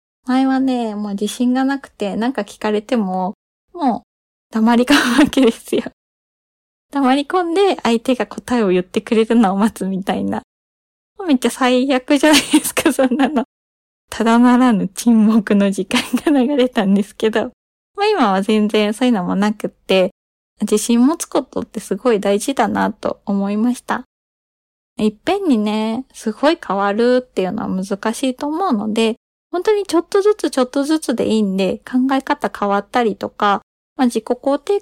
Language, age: Japanese, 20-39